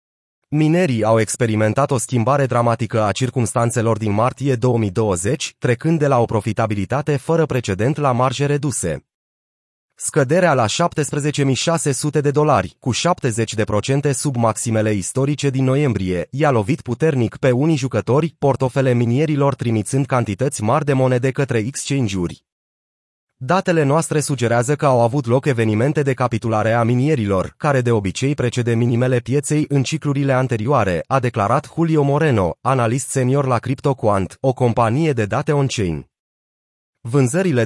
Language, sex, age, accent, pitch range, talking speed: Romanian, male, 30-49, native, 115-145 Hz, 130 wpm